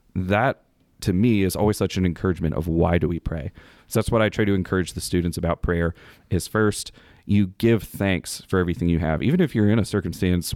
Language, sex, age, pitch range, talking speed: English, male, 30-49, 85-105 Hz, 220 wpm